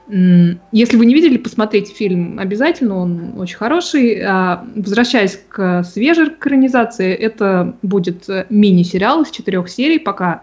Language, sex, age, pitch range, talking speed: Russian, female, 20-39, 185-235 Hz, 120 wpm